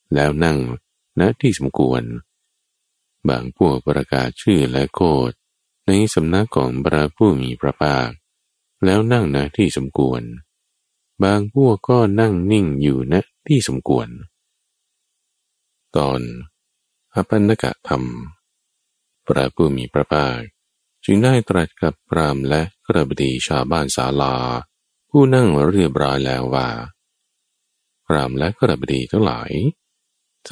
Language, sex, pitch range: Thai, male, 65-100 Hz